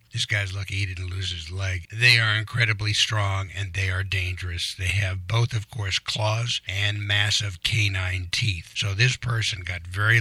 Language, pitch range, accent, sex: English, 95-115 Hz, American, male